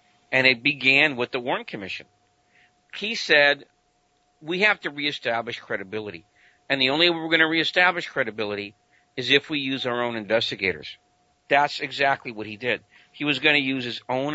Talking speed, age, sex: 175 wpm, 50-69, male